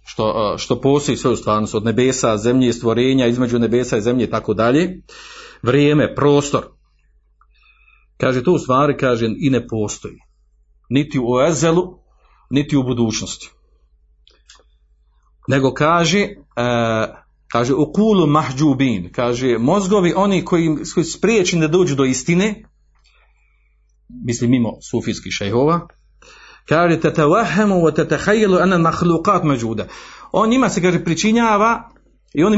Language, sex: Croatian, male